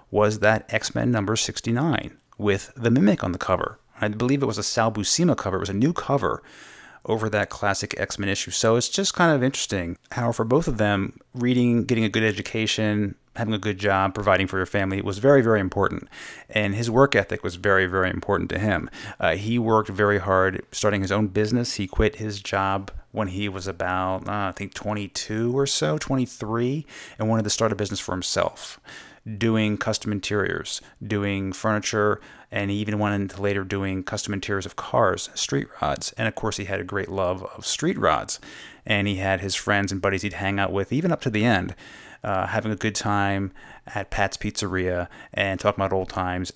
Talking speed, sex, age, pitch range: 200 wpm, male, 30-49, 100-115 Hz